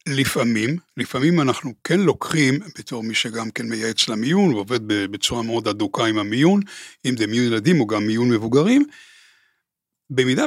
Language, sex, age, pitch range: Hebrew, male, 60-79, 130-210 Hz